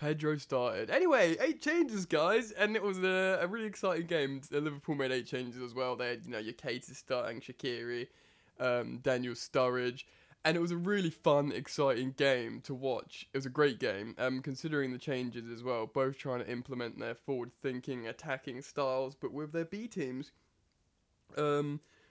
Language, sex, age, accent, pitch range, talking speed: English, male, 20-39, British, 125-150 Hz, 175 wpm